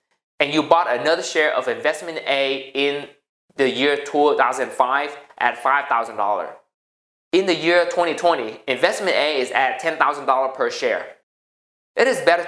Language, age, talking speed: English, 20-39, 135 wpm